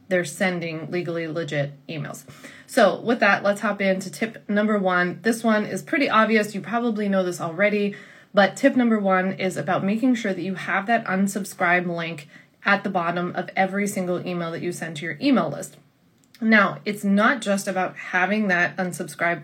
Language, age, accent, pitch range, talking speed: English, 20-39, American, 180-210 Hz, 185 wpm